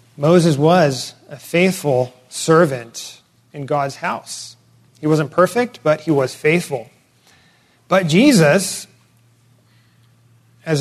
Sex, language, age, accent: male, English, 30-49, American